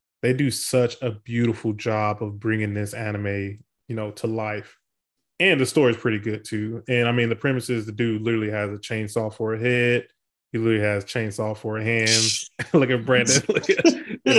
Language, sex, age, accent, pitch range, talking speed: English, male, 20-39, American, 105-125 Hz, 195 wpm